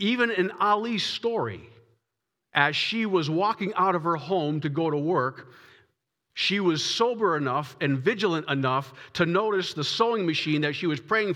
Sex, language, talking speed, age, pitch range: male, English, 170 wpm, 50-69, 130-180 Hz